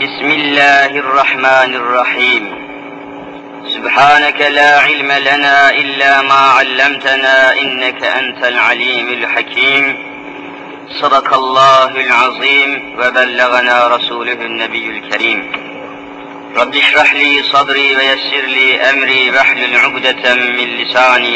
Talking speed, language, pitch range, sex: 95 wpm, Turkish, 125-140 Hz, male